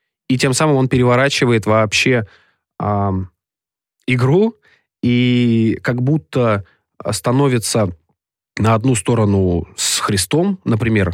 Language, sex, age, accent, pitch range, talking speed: Russian, male, 20-39, native, 105-130 Hz, 95 wpm